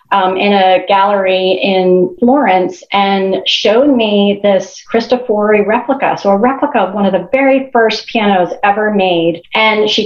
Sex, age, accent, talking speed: female, 30-49, American, 155 wpm